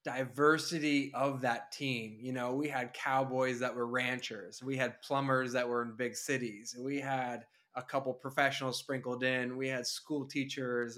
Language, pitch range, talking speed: English, 125-145 Hz, 170 wpm